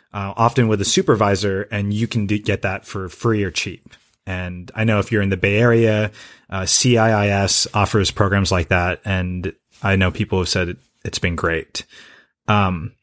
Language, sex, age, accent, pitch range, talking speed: English, male, 30-49, American, 95-120 Hz, 180 wpm